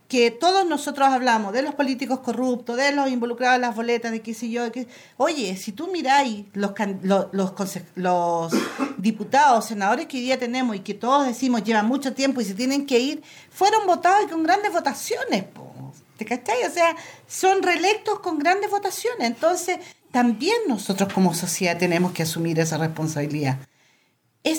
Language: Spanish